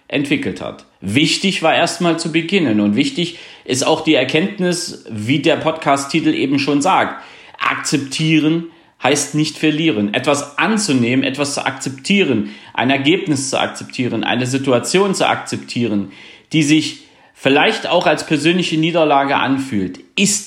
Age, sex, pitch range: 40-59, male, 120-155 Hz